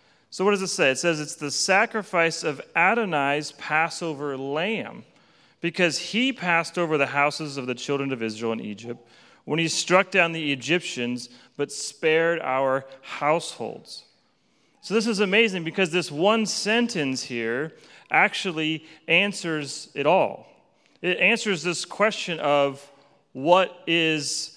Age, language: 40-59, English